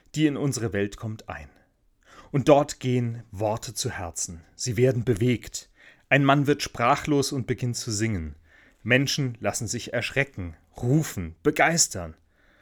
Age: 30-49